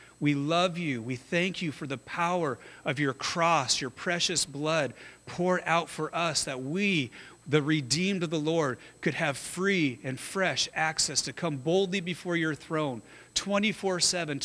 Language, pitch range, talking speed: English, 145-185 Hz, 160 wpm